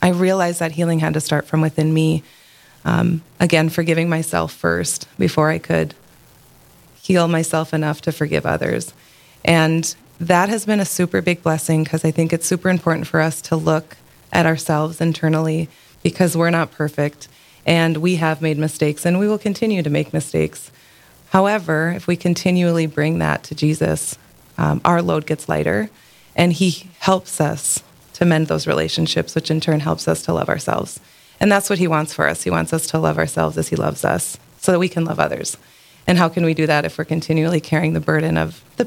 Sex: female